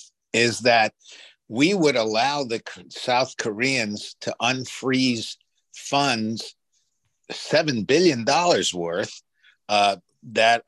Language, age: English, 60-79